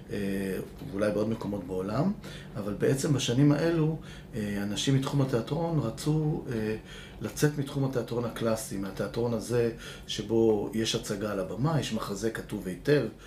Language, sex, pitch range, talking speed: Hebrew, male, 110-150 Hz, 120 wpm